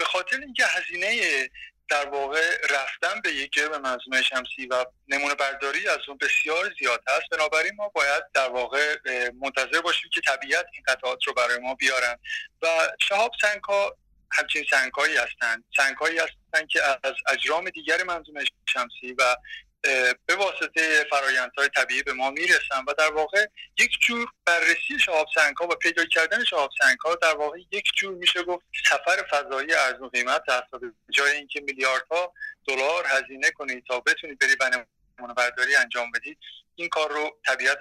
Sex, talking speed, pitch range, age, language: male, 155 wpm, 135-200 Hz, 30-49, Persian